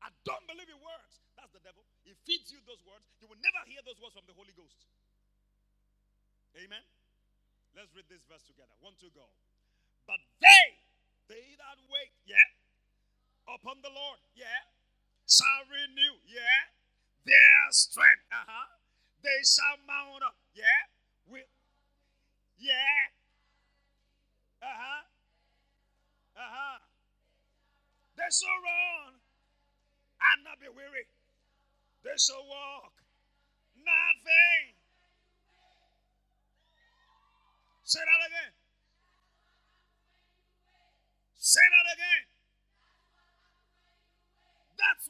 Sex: male